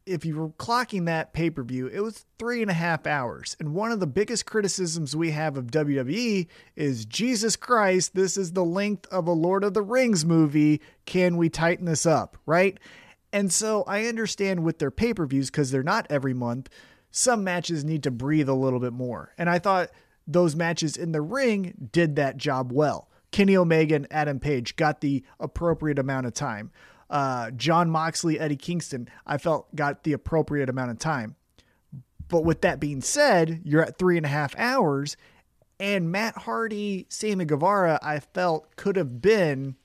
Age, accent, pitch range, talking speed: 30-49, American, 145-185 Hz, 185 wpm